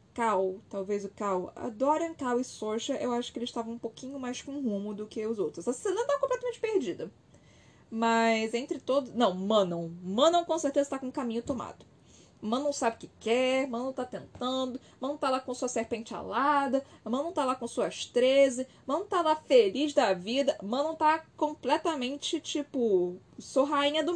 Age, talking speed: 10-29, 185 wpm